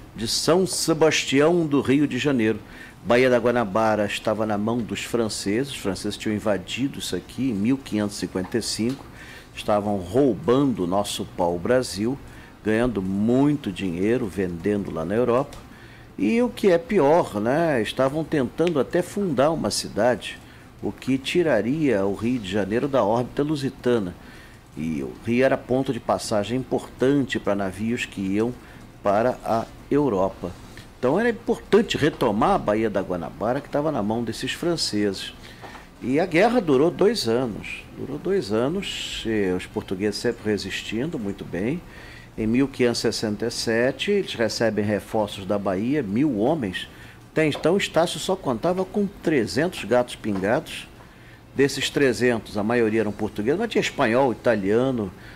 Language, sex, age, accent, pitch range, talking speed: Portuguese, male, 50-69, Brazilian, 105-135 Hz, 140 wpm